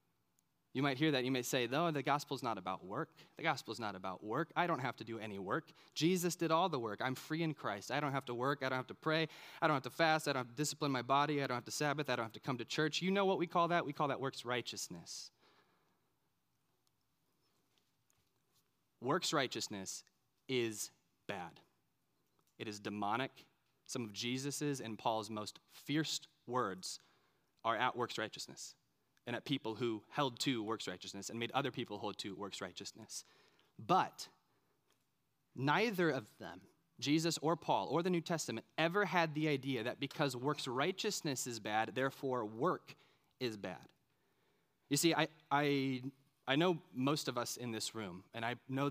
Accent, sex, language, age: American, male, English, 30-49